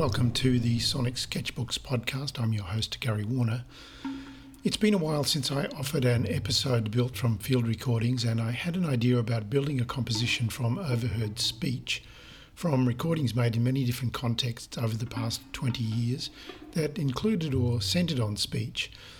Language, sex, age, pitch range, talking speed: English, male, 50-69, 115-145 Hz, 170 wpm